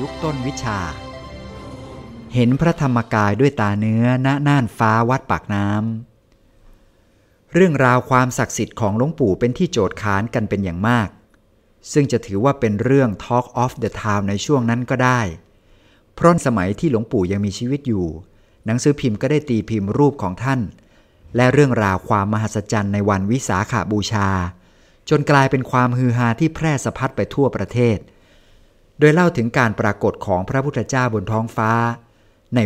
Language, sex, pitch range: Thai, male, 105-130 Hz